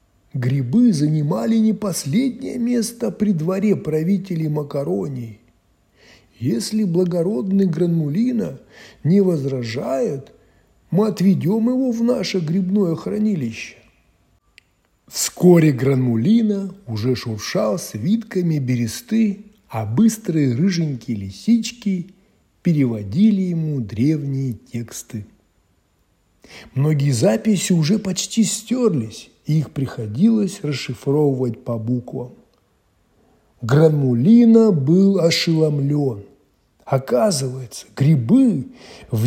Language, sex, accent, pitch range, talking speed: Russian, male, native, 135-210 Hz, 80 wpm